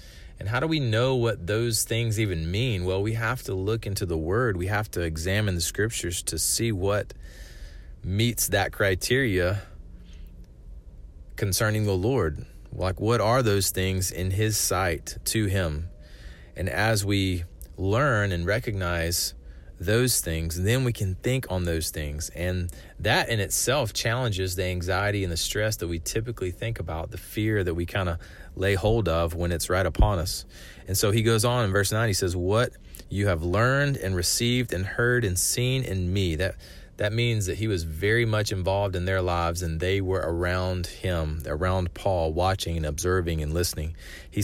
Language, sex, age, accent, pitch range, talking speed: English, male, 30-49, American, 85-110 Hz, 180 wpm